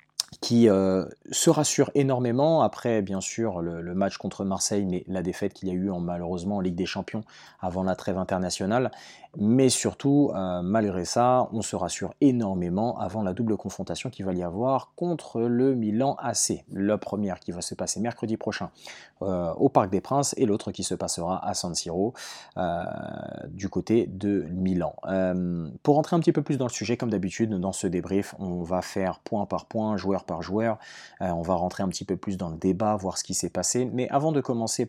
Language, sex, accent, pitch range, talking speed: French, male, French, 95-120 Hz, 205 wpm